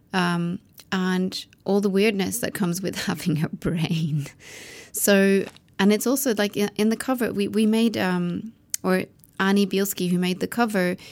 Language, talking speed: English, 160 wpm